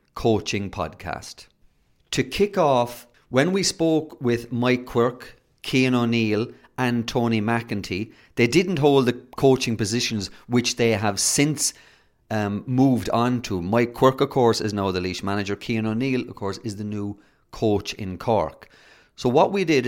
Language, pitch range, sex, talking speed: English, 105-130 Hz, male, 160 wpm